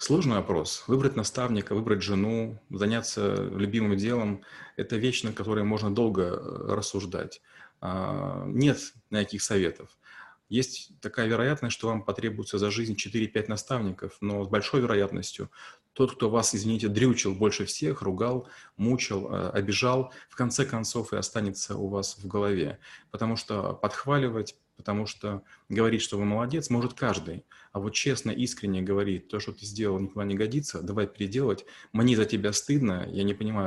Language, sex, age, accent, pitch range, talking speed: Russian, male, 30-49, native, 100-120 Hz, 150 wpm